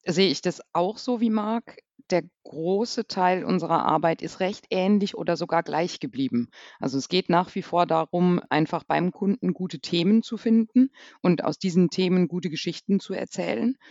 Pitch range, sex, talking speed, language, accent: 145-190 Hz, female, 175 wpm, German, German